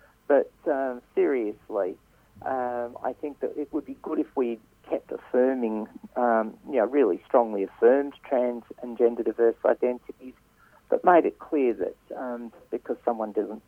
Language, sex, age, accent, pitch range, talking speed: English, male, 50-69, Australian, 105-135 Hz, 155 wpm